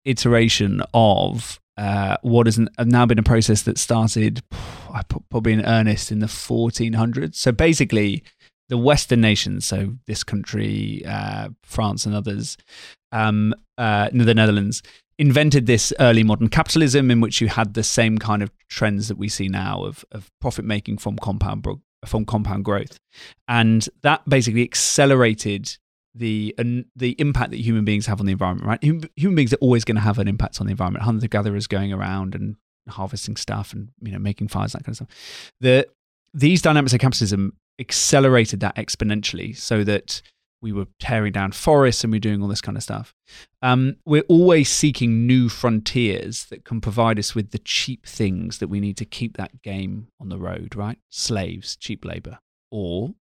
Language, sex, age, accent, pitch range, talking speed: English, male, 20-39, British, 105-125 Hz, 180 wpm